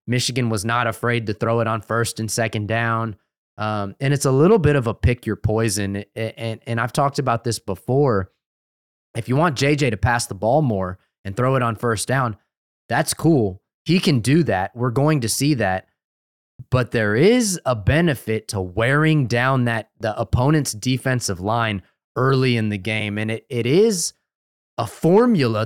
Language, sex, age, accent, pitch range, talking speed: English, male, 20-39, American, 110-135 Hz, 185 wpm